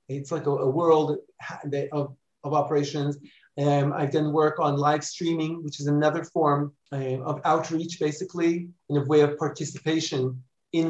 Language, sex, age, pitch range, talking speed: English, male, 40-59, 145-165 Hz, 160 wpm